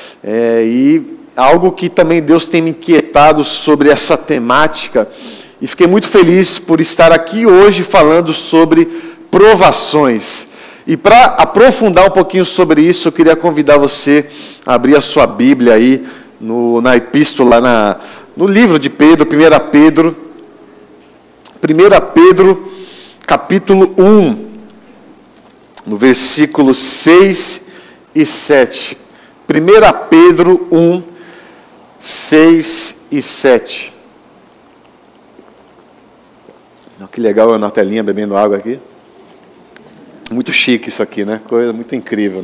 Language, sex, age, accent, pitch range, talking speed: Portuguese, male, 50-69, Brazilian, 130-185 Hz, 120 wpm